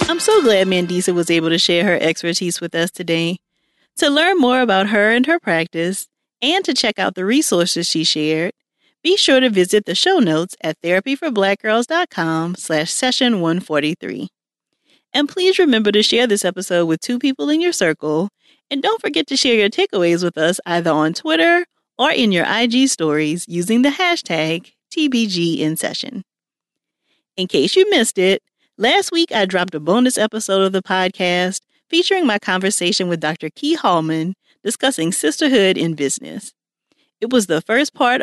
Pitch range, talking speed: 170-275 Hz, 165 wpm